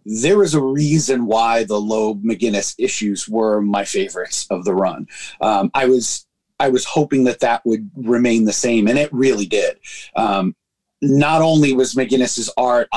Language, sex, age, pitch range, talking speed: English, male, 30-49, 125-175 Hz, 165 wpm